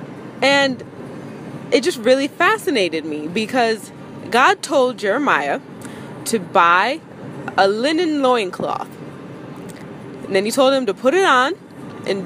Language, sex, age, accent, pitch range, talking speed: English, female, 20-39, American, 195-300 Hz, 120 wpm